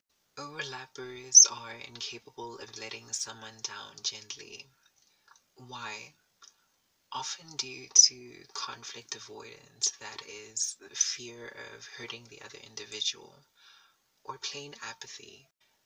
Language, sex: English, female